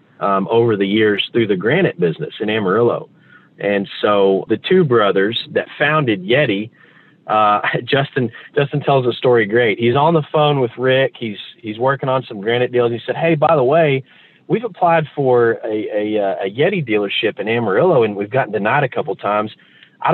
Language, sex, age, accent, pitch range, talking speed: English, male, 40-59, American, 120-165 Hz, 190 wpm